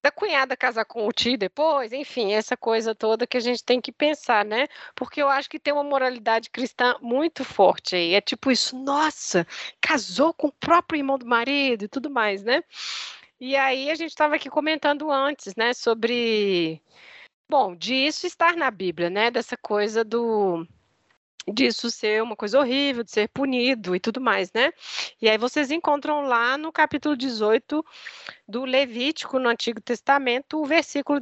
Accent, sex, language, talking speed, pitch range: Brazilian, female, Portuguese, 175 wpm, 225-285 Hz